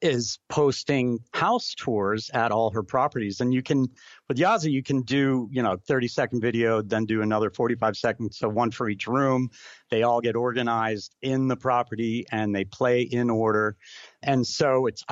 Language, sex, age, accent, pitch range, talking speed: English, male, 40-59, American, 110-130 Hz, 180 wpm